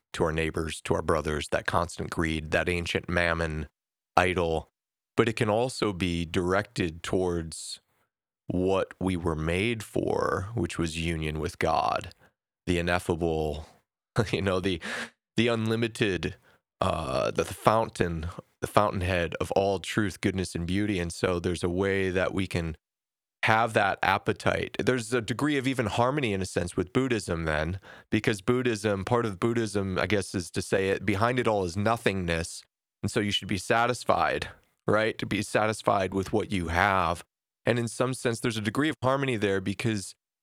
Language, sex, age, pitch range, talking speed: English, male, 30-49, 90-115 Hz, 170 wpm